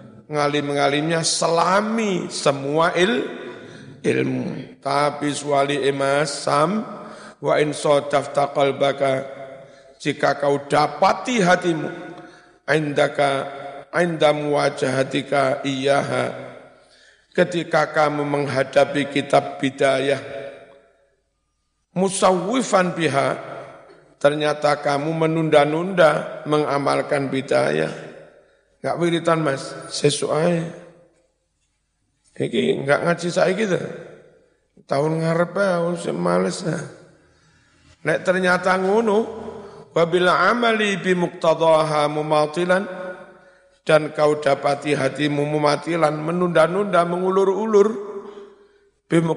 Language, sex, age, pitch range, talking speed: Indonesian, male, 50-69, 140-180 Hz, 75 wpm